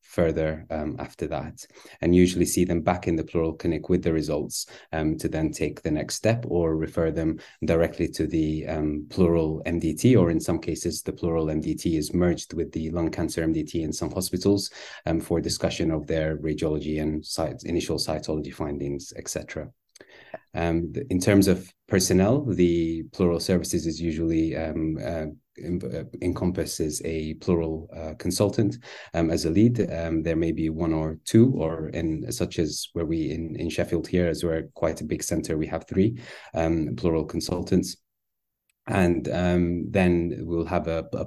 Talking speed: 175 wpm